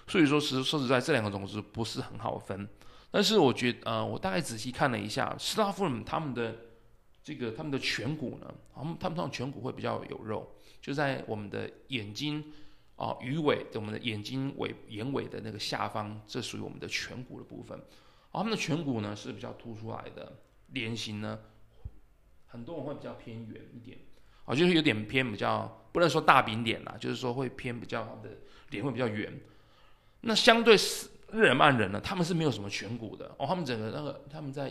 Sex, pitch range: male, 110-140 Hz